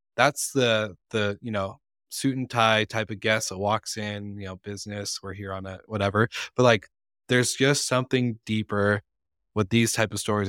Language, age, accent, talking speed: English, 20-39, American, 190 wpm